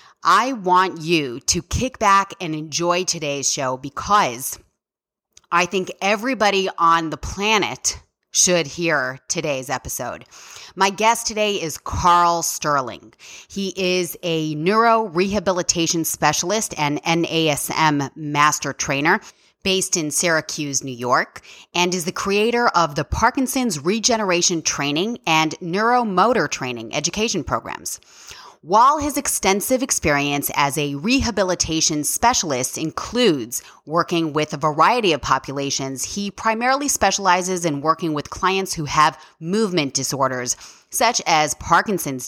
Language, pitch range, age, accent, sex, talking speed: English, 145-195 Hz, 30-49, American, female, 120 wpm